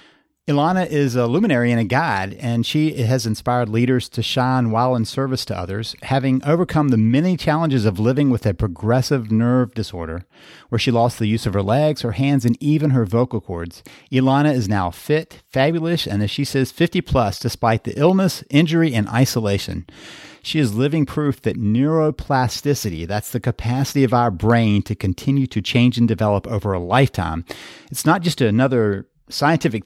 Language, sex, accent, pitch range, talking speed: English, male, American, 110-145 Hz, 180 wpm